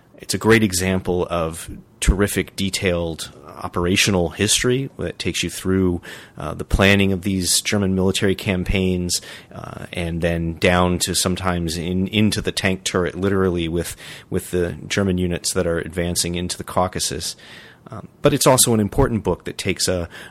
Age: 30-49